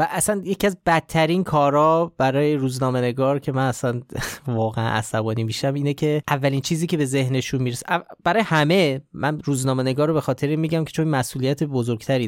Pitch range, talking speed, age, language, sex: 125-165 Hz, 165 wpm, 30-49, Persian, male